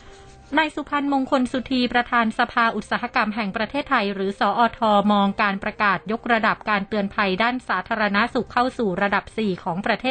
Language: Thai